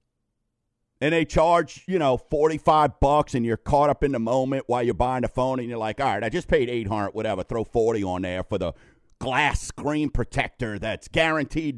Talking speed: 210 wpm